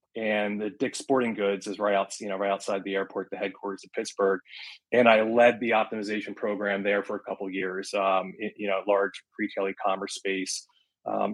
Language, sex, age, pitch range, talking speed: English, male, 30-49, 100-110 Hz, 200 wpm